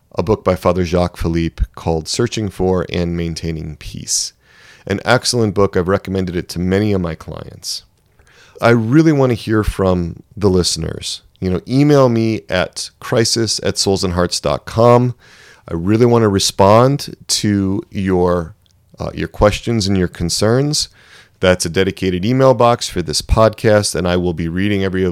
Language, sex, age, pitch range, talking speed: English, male, 30-49, 90-110 Hz, 160 wpm